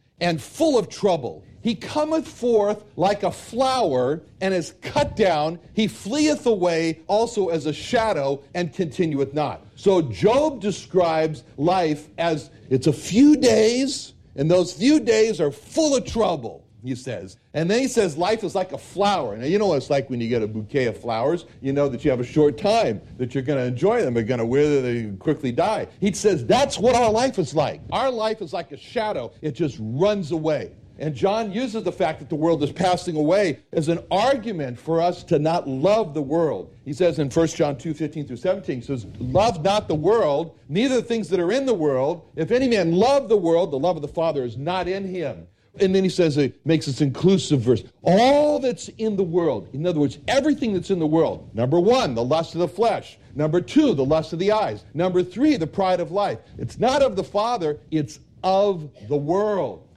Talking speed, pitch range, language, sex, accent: 215 wpm, 140-200 Hz, English, male, American